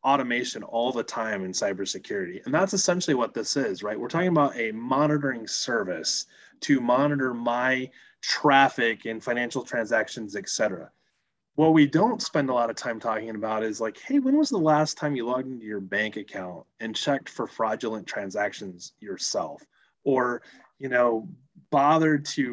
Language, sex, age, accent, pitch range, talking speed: English, male, 30-49, American, 110-155 Hz, 165 wpm